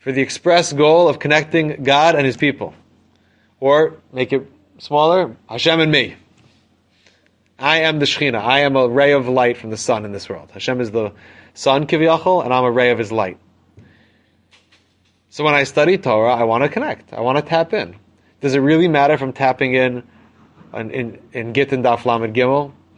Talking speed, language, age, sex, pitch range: 190 wpm, English, 30-49, male, 125-165 Hz